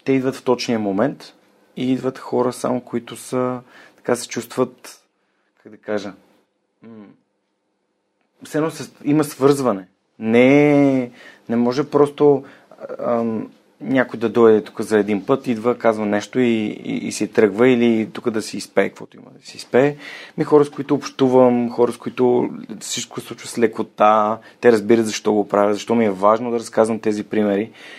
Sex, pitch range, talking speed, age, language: male, 110-130 Hz, 165 wpm, 30-49, Bulgarian